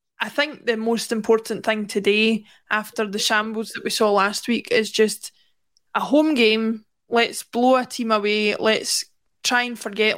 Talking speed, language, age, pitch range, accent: 170 wpm, English, 20-39, 210-235 Hz, British